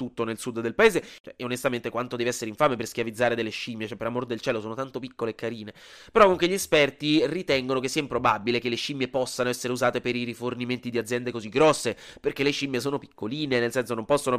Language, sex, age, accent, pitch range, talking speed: Italian, male, 20-39, native, 115-165 Hz, 235 wpm